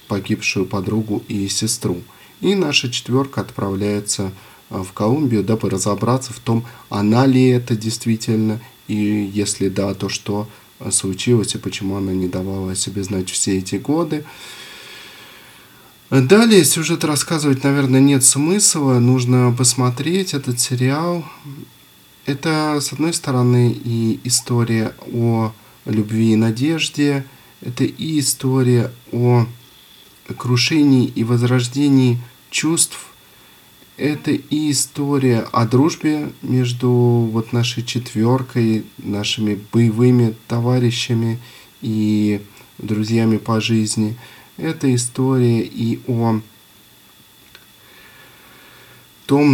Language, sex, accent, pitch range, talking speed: Russian, male, native, 105-130 Hz, 100 wpm